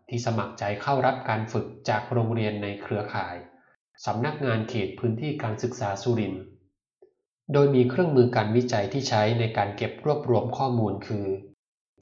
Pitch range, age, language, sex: 105-125 Hz, 20-39, Thai, male